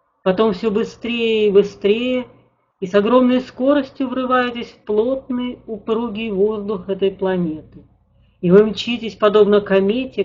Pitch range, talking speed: 175-225 Hz, 125 wpm